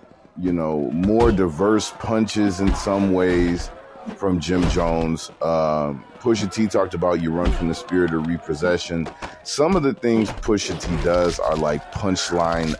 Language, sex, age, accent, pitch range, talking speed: English, male, 30-49, American, 85-110 Hz, 155 wpm